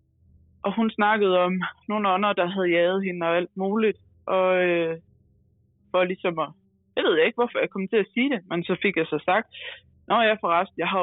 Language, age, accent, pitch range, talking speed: Danish, 20-39, native, 130-200 Hz, 205 wpm